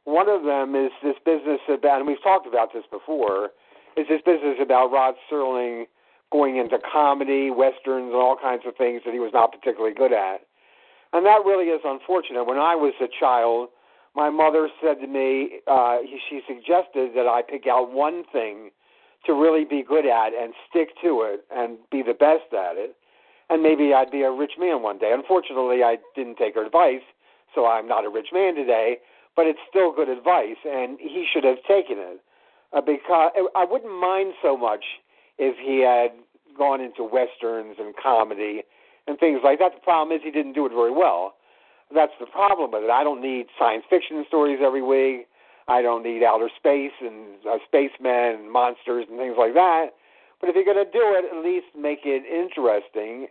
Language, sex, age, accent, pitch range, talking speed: English, male, 50-69, American, 125-160 Hz, 195 wpm